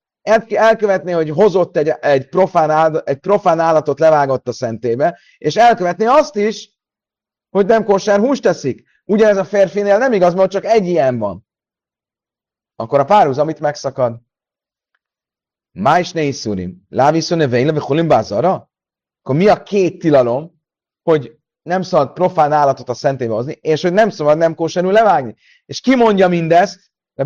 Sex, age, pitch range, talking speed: male, 30-49, 125-200 Hz, 150 wpm